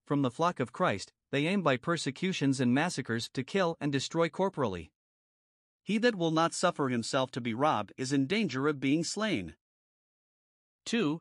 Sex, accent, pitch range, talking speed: male, American, 135-175 Hz, 170 wpm